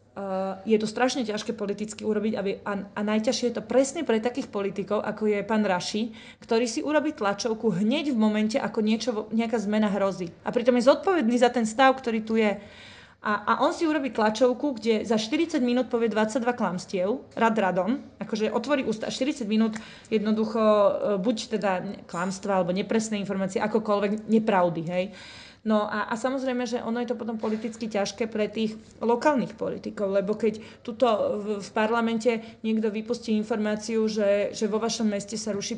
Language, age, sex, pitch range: Slovak, 30-49, female, 205-235 Hz